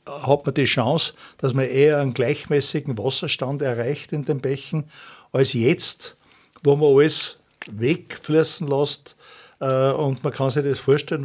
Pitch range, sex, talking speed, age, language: 130-150 Hz, male, 145 wpm, 60-79, German